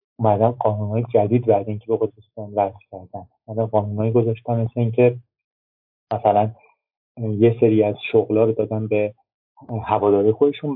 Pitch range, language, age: 105-125 Hz, Persian, 30-49